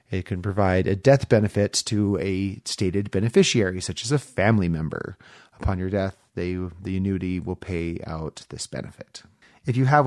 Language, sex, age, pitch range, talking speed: English, male, 30-49, 90-120 Hz, 175 wpm